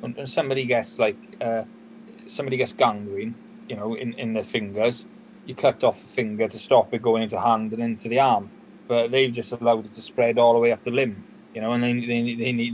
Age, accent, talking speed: 30-49, British, 230 wpm